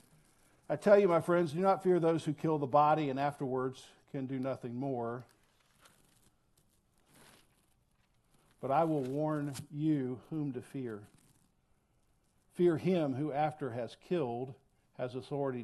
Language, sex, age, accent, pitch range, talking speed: English, male, 60-79, American, 115-150 Hz, 135 wpm